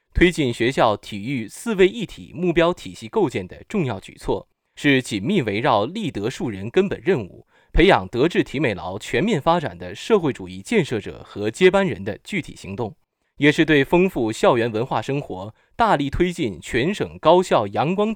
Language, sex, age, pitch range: Chinese, male, 20-39, 115-175 Hz